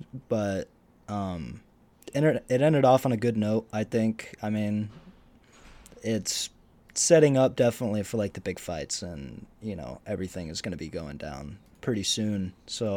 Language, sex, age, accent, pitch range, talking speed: English, male, 20-39, American, 95-115 Hz, 160 wpm